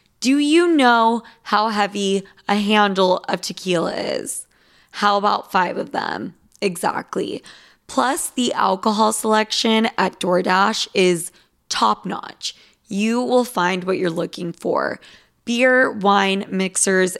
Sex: female